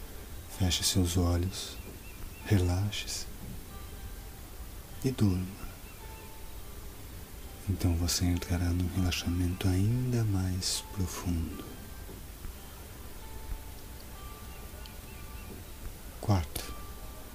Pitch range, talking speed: 85-100 Hz, 50 wpm